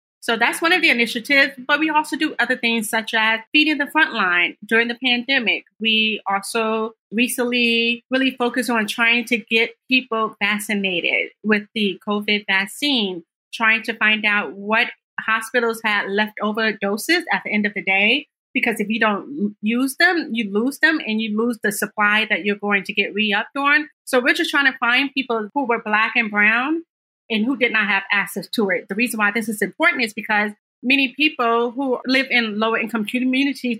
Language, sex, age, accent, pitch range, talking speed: English, female, 30-49, American, 210-245 Hz, 190 wpm